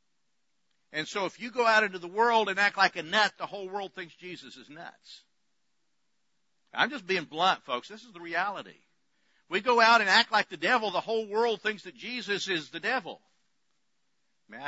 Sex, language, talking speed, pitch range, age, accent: male, English, 195 wpm, 160-205 Hz, 50-69, American